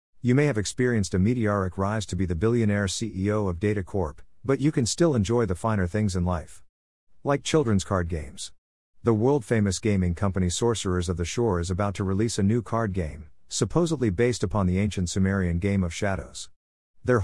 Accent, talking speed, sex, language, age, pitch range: American, 190 wpm, male, English, 50-69, 90-115 Hz